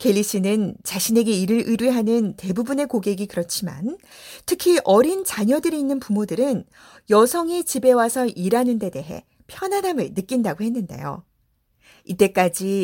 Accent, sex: native, female